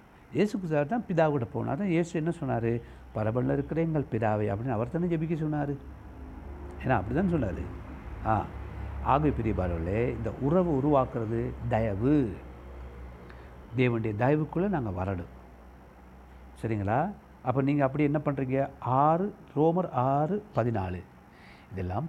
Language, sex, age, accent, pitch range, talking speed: Tamil, male, 60-79, native, 100-160 Hz, 120 wpm